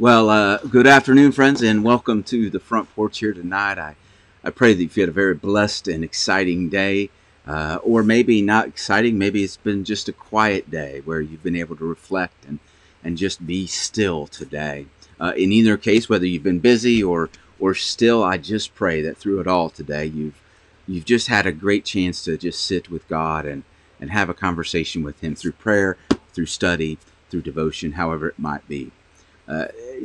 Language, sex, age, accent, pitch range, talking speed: English, male, 40-59, American, 80-105 Hz, 195 wpm